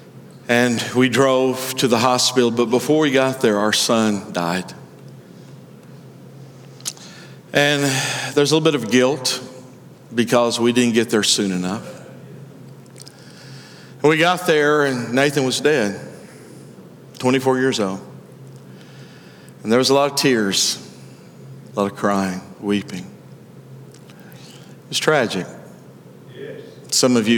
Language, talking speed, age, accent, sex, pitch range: English, 125 wpm, 50-69, American, male, 110-135 Hz